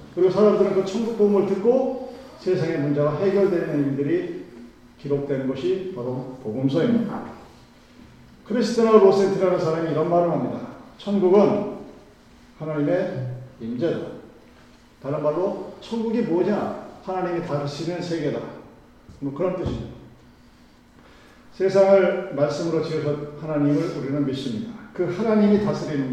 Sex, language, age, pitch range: male, Korean, 40-59, 155-210 Hz